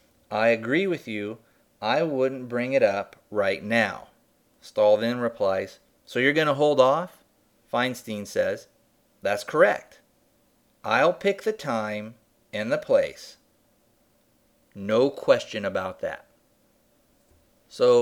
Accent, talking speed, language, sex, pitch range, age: American, 120 wpm, English, male, 115-175 Hz, 40-59